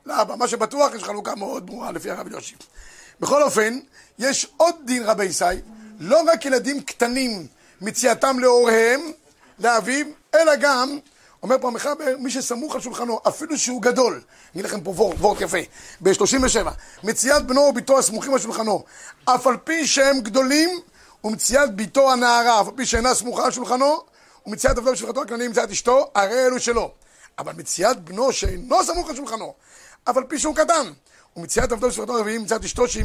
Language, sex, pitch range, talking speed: Hebrew, male, 225-275 Hz, 150 wpm